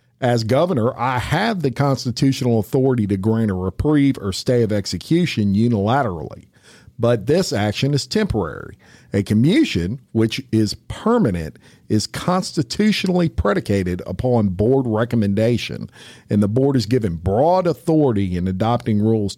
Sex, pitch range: male, 105-135 Hz